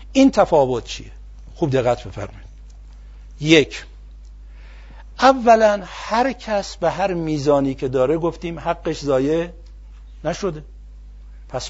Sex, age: male, 60-79